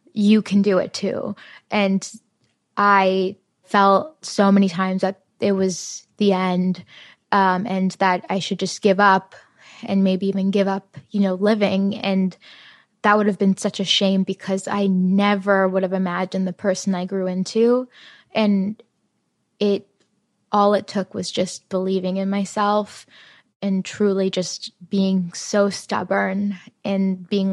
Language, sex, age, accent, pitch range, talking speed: English, female, 20-39, American, 190-210 Hz, 150 wpm